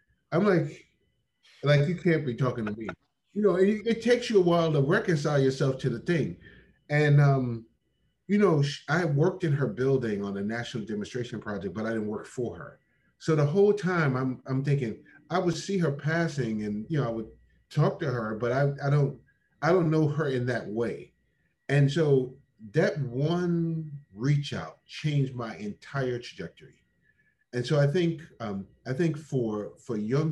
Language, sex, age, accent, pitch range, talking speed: English, male, 30-49, American, 110-155 Hz, 185 wpm